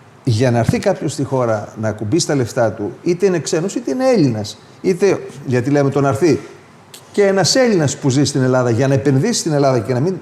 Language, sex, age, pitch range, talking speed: Greek, male, 40-59, 125-170 Hz, 215 wpm